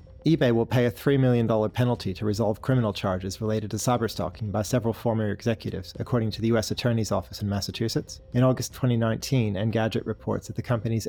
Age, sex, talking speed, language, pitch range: 30-49, male, 185 wpm, English, 105-120 Hz